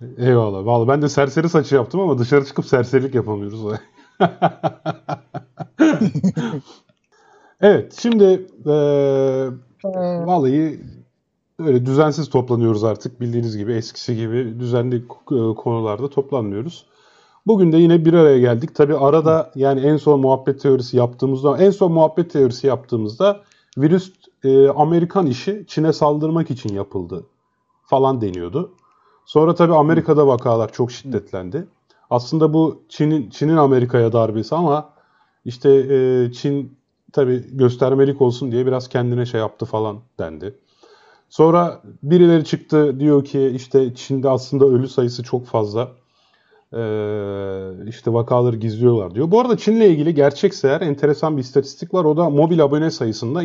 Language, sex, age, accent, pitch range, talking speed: Turkish, male, 30-49, native, 120-160 Hz, 125 wpm